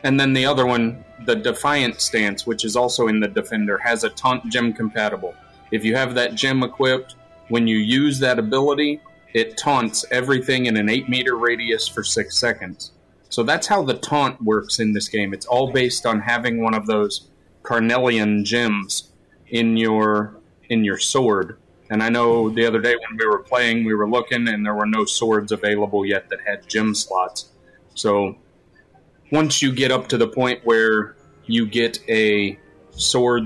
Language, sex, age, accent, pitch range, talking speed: English, male, 30-49, American, 105-125 Hz, 185 wpm